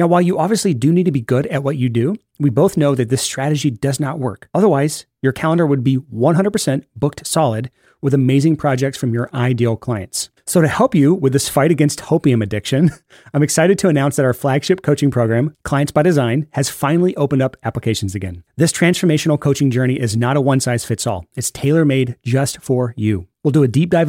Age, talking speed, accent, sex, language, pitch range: 30-49, 205 wpm, American, male, English, 120-155 Hz